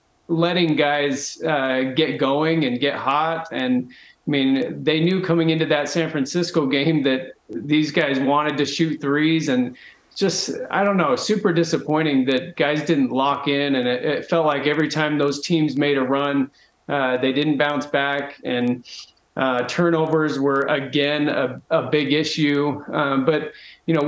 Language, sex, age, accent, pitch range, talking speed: English, male, 30-49, American, 135-160 Hz, 170 wpm